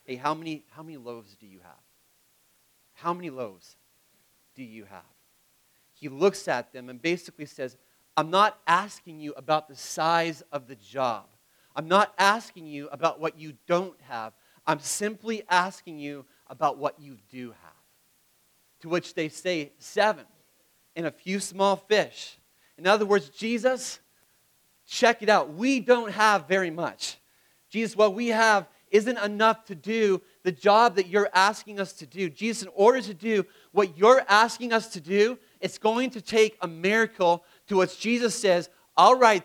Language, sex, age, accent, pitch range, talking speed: English, male, 30-49, American, 160-215 Hz, 170 wpm